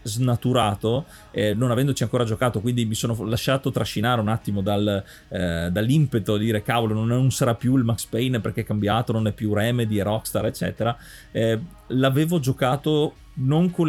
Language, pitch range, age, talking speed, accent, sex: Italian, 110-135 Hz, 30-49, 175 wpm, native, male